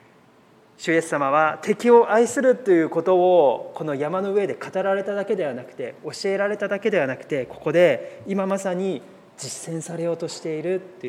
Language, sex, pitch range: Japanese, male, 150-195 Hz